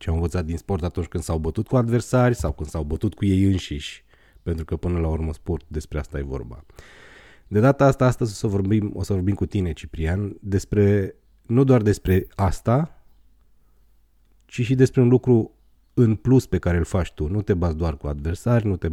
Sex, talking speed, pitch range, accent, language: male, 210 wpm, 80-105 Hz, native, Romanian